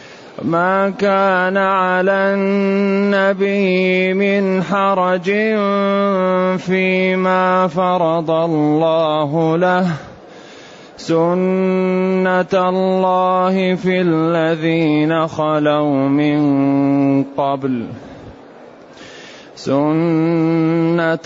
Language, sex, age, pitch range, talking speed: Arabic, male, 30-49, 145-185 Hz, 50 wpm